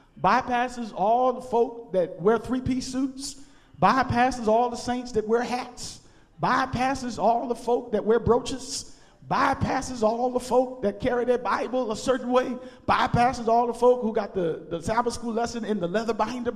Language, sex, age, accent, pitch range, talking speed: English, male, 40-59, American, 170-265 Hz, 180 wpm